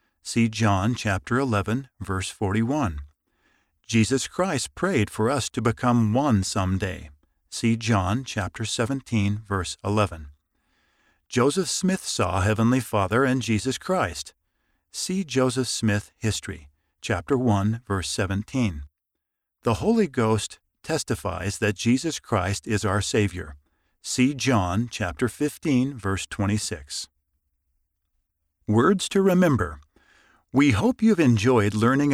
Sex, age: male, 50-69